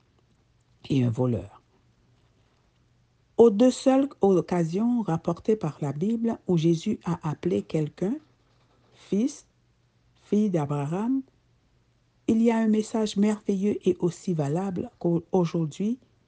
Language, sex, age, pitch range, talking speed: French, female, 60-79, 145-195 Hz, 105 wpm